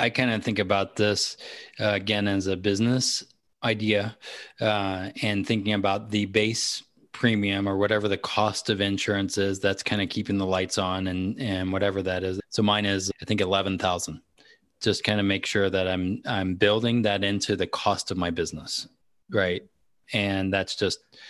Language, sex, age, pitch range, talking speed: English, male, 20-39, 95-105 Hz, 180 wpm